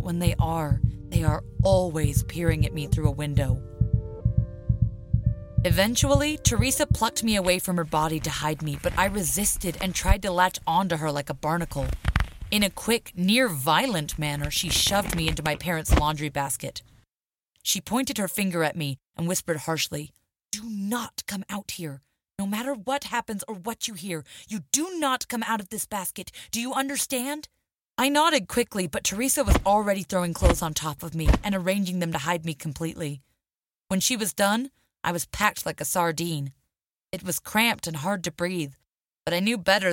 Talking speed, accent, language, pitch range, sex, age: 185 wpm, American, English, 150-200 Hz, female, 30-49